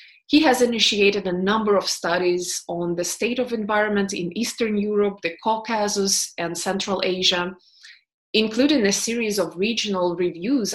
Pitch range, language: 175-210 Hz, English